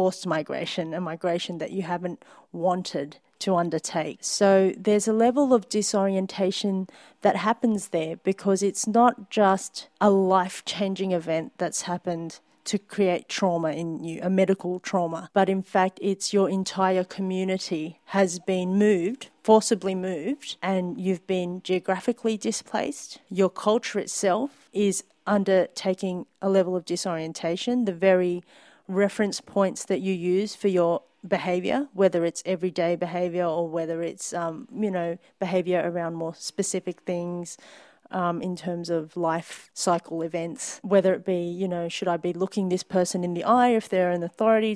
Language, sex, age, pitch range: English, female, 40-59, 175-200 Hz